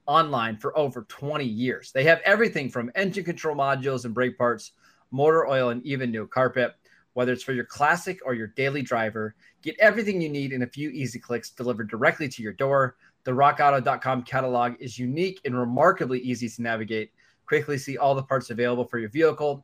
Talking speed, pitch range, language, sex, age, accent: 195 wpm, 120-145 Hz, English, male, 20-39, American